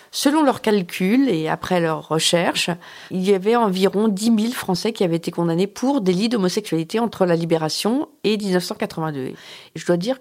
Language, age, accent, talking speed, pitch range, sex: French, 40-59, French, 175 wpm, 165-230 Hz, female